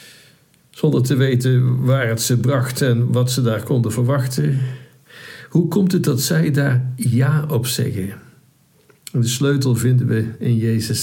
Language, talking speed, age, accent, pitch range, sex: Dutch, 150 wpm, 60-79, Dutch, 115-130 Hz, male